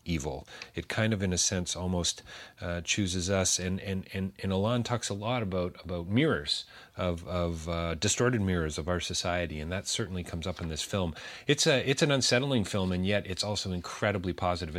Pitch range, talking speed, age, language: 85-105 Hz, 205 wpm, 40-59, English